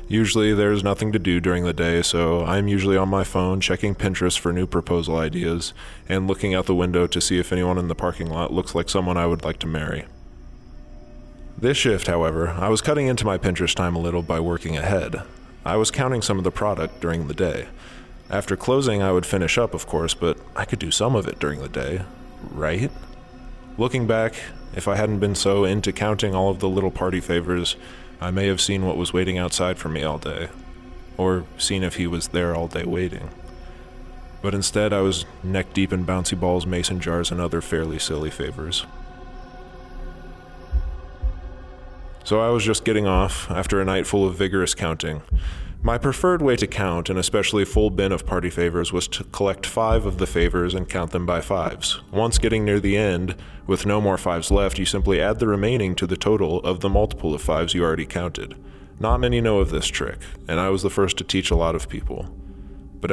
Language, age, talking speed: English, 20-39, 210 wpm